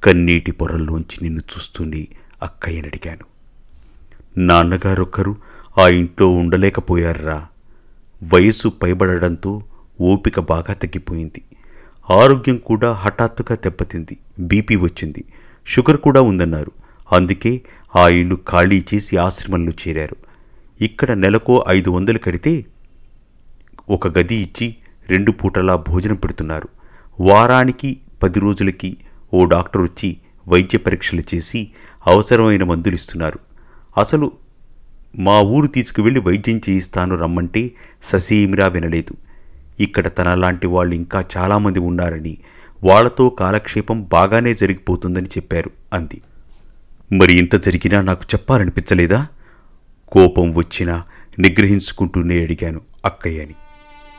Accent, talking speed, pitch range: native, 90 wpm, 85-110 Hz